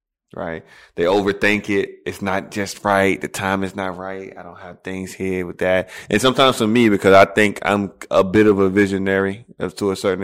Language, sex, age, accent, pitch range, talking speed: English, male, 20-39, American, 90-105 Hz, 210 wpm